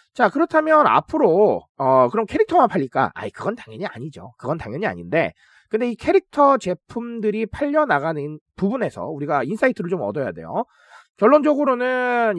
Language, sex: Korean, male